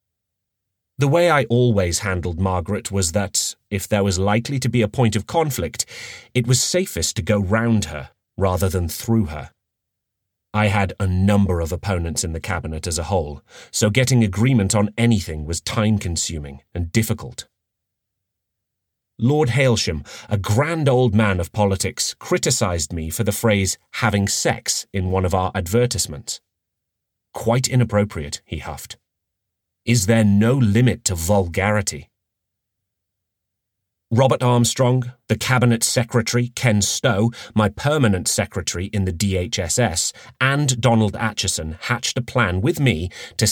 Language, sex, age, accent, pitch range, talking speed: English, male, 30-49, British, 95-120 Hz, 140 wpm